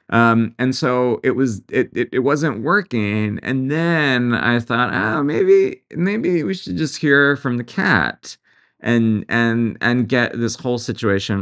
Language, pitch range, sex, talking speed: English, 95-115 Hz, male, 165 wpm